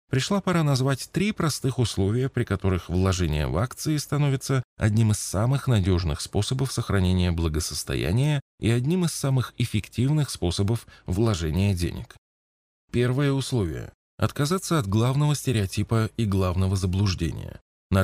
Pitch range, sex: 90-125 Hz, male